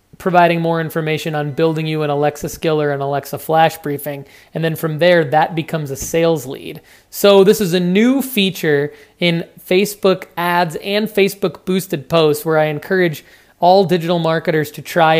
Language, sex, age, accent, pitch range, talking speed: English, male, 30-49, American, 155-180 Hz, 170 wpm